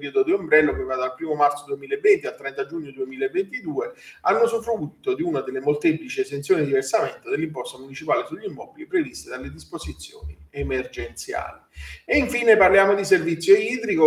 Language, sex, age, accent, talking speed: Italian, male, 40-59, native, 155 wpm